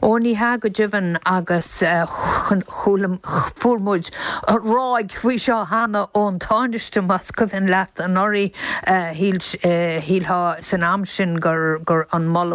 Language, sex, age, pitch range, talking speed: German, female, 50-69, 160-190 Hz, 120 wpm